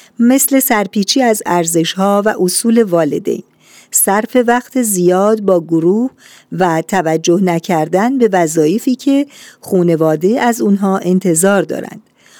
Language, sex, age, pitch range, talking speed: Persian, female, 50-69, 170-225 Hz, 110 wpm